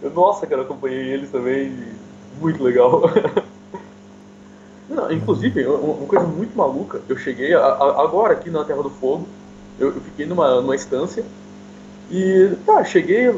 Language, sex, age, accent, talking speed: Portuguese, male, 20-39, Brazilian, 140 wpm